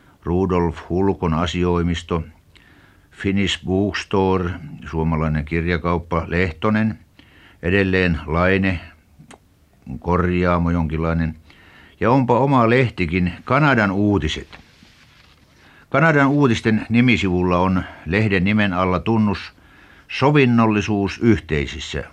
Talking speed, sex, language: 75 wpm, male, Finnish